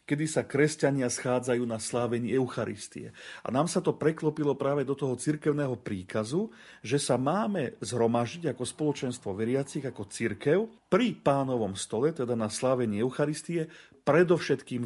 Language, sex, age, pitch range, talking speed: Slovak, male, 40-59, 120-155 Hz, 135 wpm